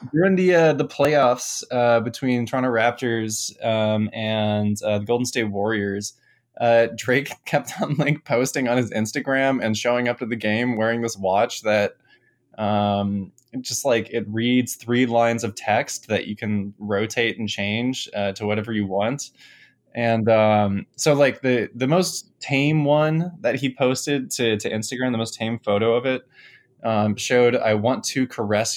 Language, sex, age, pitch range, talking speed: English, male, 20-39, 105-125 Hz, 170 wpm